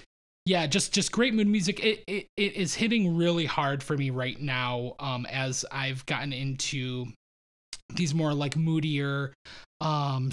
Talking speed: 155 wpm